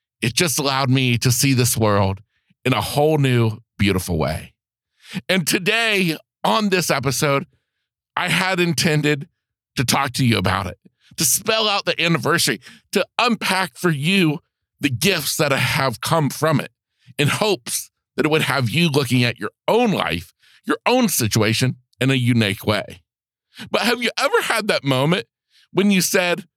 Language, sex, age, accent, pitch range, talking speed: English, male, 50-69, American, 130-185 Hz, 165 wpm